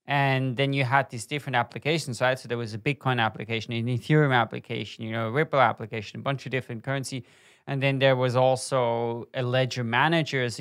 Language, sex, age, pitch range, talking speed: English, male, 20-39, 120-145 Hz, 205 wpm